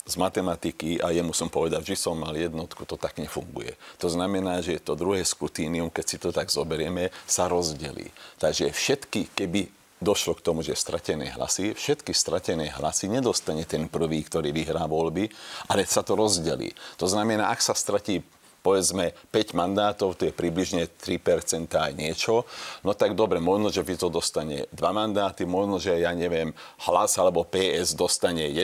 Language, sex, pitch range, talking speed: Slovak, male, 85-100 Hz, 170 wpm